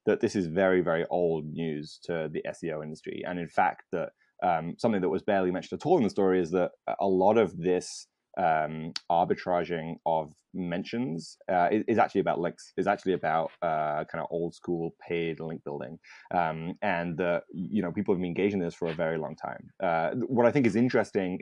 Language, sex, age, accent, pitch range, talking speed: English, male, 20-39, British, 85-100 Hz, 205 wpm